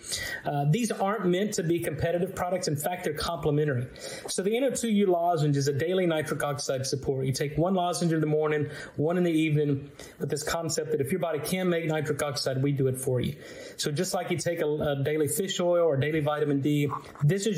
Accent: American